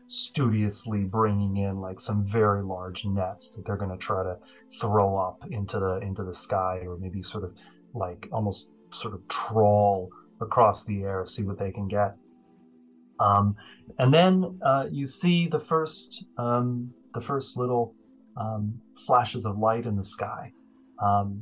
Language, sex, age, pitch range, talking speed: English, male, 30-49, 100-125 Hz, 165 wpm